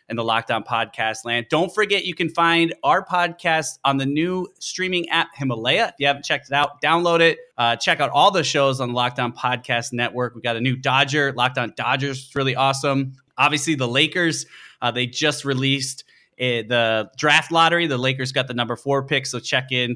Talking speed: 200 wpm